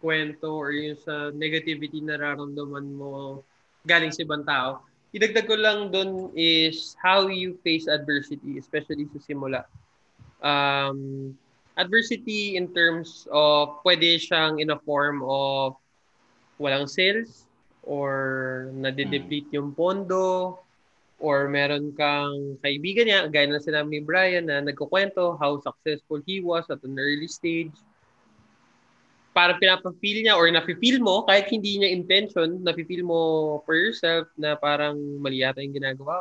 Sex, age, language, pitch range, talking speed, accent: male, 20-39, English, 140-170 Hz, 135 wpm, Filipino